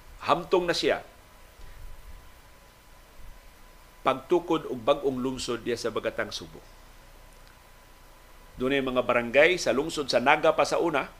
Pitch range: 115-140 Hz